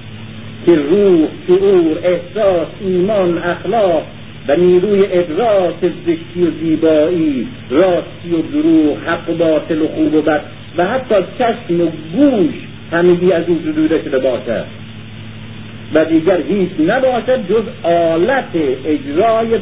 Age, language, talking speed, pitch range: 50-69, Persian, 125 wpm, 120-180 Hz